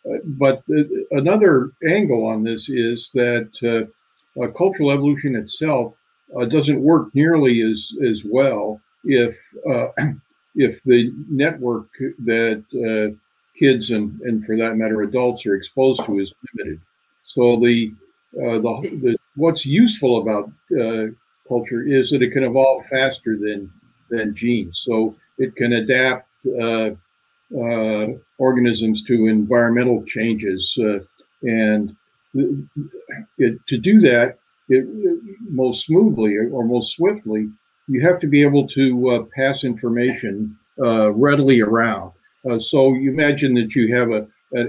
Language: English